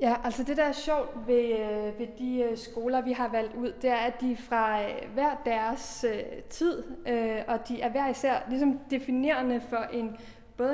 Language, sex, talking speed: Danish, female, 210 wpm